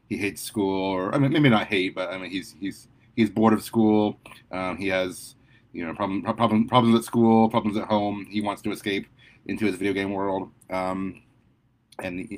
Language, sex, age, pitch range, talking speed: English, male, 30-49, 100-120 Hz, 205 wpm